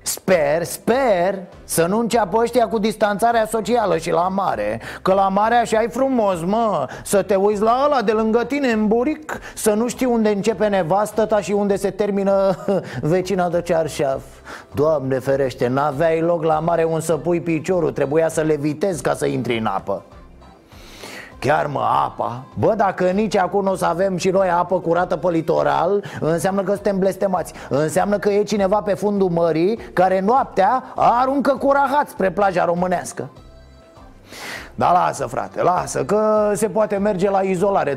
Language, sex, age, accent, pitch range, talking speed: Romanian, male, 30-49, native, 170-215 Hz, 165 wpm